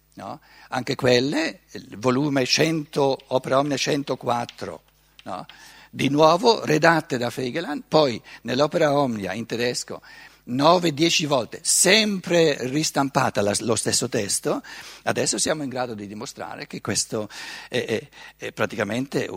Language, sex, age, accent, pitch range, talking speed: Italian, male, 60-79, native, 120-165 Hz, 120 wpm